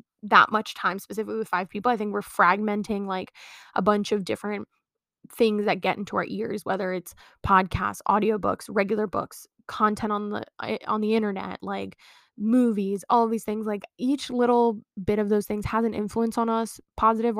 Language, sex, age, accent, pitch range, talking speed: English, female, 10-29, American, 200-235 Hz, 185 wpm